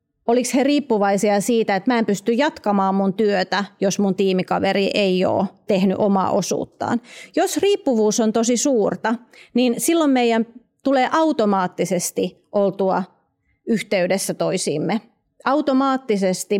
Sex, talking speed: female, 120 wpm